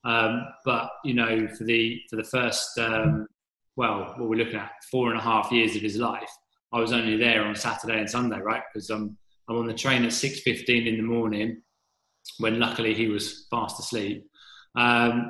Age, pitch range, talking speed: 20-39, 110-120 Hz, 200 wpm